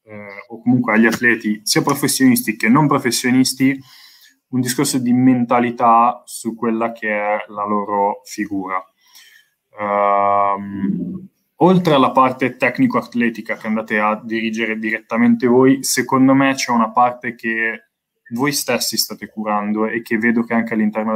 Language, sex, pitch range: Italian, male, 105-120 Hz